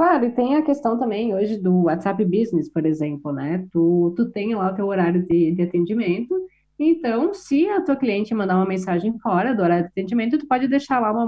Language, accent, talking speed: Portuguese, Brazilian, 220 wpm